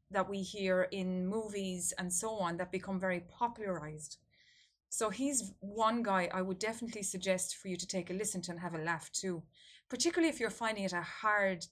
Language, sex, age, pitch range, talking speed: English, female, 20-39, 185-220 Hz, 200 wpm